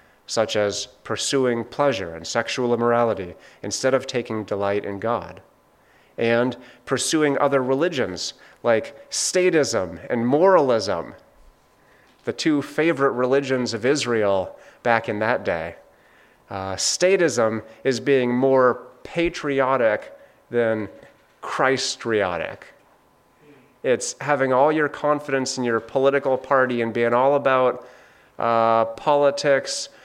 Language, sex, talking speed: English, male, 110 wpm